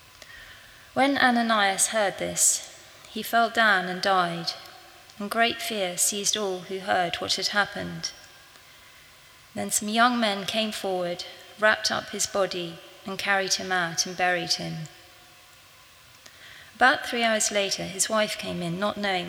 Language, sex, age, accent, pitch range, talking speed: English, female, 30-49, British, 185-220 Hz, 145 wpm